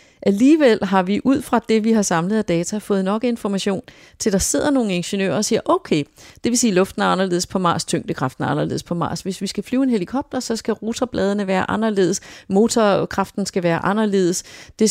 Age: 30-49